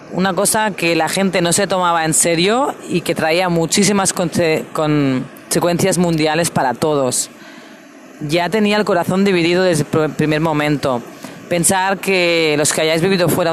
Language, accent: Spanish, Spanish